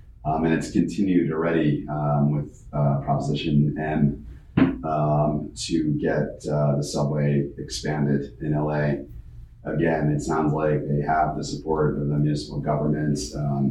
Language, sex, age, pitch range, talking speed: English, male, 30-49, 70-75 Hz, 130 wpm